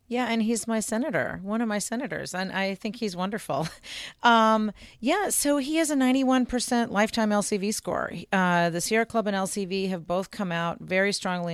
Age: 40-59